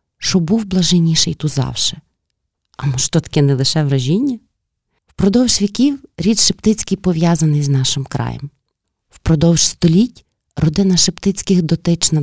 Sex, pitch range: female, 145-185 Hz